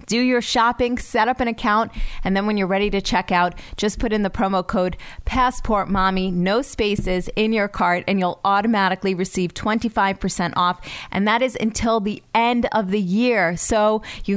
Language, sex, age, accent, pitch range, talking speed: English, female, 30-49, American, 180-215 Hz, 190 wpm